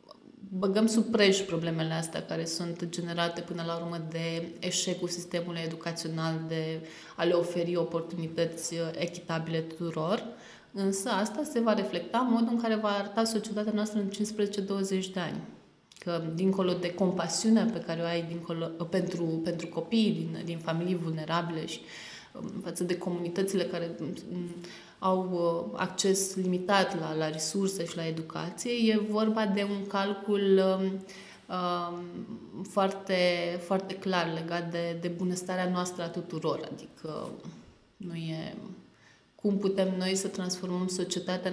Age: 20-39